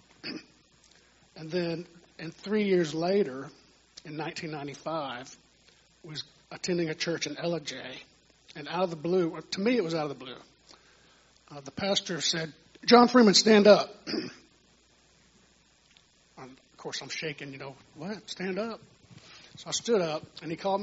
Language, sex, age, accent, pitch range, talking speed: English, male, 50-69, American, 150-185 Hz, 155 wpm